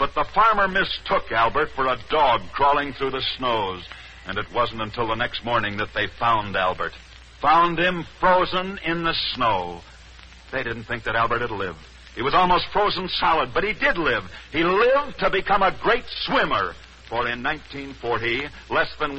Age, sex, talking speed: 60-79, male, 180 wpm